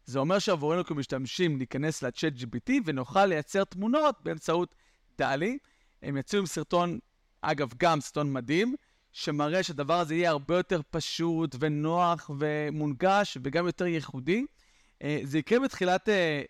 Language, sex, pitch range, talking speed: Hebrew, male, 140-185 Hz, 125 wpm